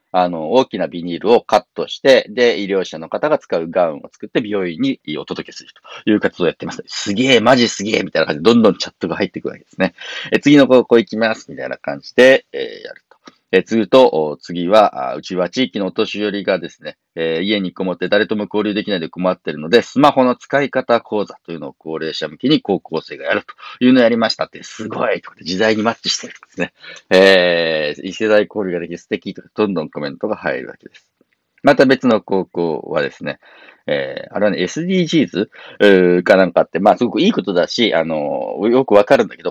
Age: 40-59